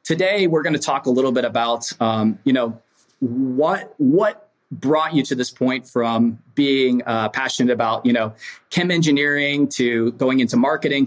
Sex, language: male, English